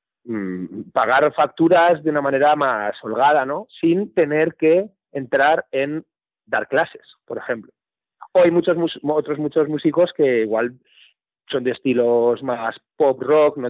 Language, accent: Spanish, Spanish